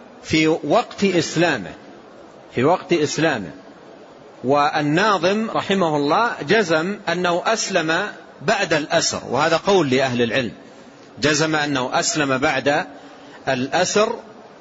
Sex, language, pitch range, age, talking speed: male, Arabic, 150-210 Hz, 40-59, 95 wpm